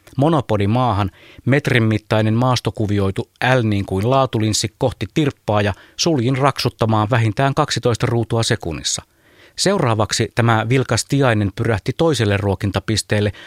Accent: native